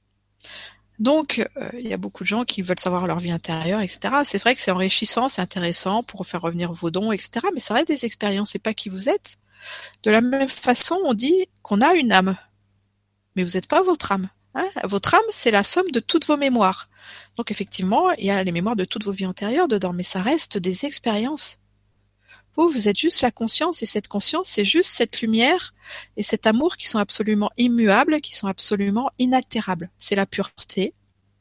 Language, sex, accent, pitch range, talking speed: French, female, French, 180-250 Hz, 205 wpm